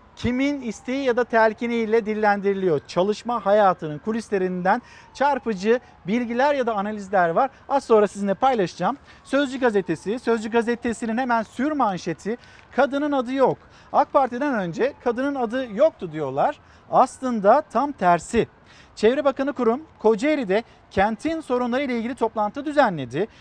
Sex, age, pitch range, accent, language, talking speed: male, 50-69, 205-255 Hz, native, Turkish, 130 wpm